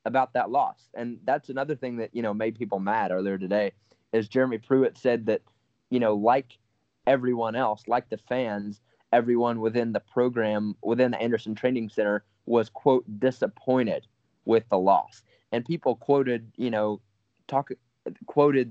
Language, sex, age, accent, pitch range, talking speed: English, male, 20-39, American, 110-130 Hz, 160 wpm